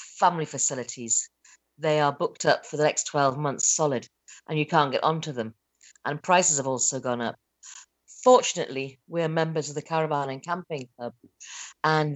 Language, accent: Chinese, British